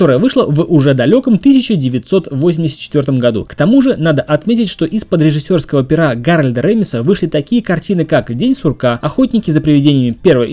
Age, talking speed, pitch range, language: 20-39, 160 wpm, 135-185 Hz, Russian